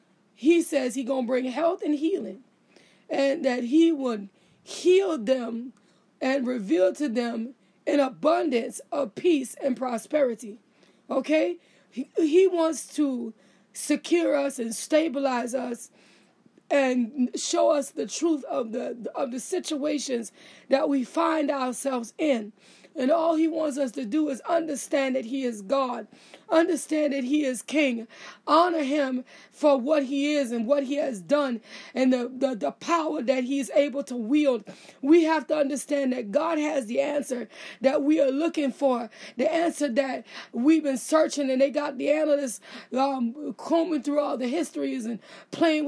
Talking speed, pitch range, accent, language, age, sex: 160 wpm, 250-305 Hz, American, English, 20-39, female